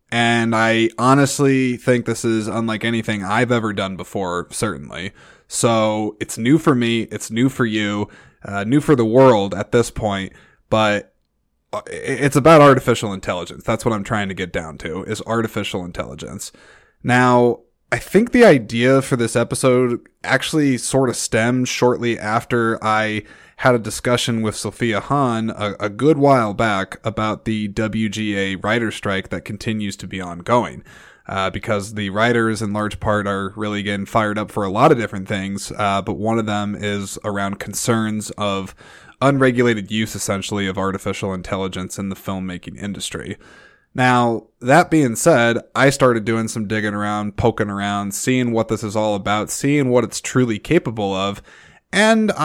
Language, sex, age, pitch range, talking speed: English, male, 20-39, 105-130 Hz, 165 wpm